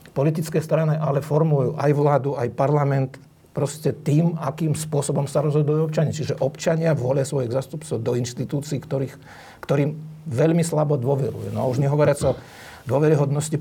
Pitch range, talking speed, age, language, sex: 130-150 Hz, 145 wpm, 50-69, Slovak, male